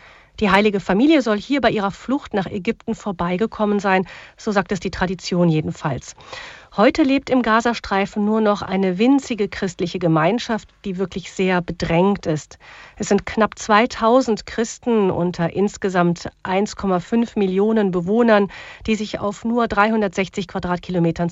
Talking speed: 140 wpm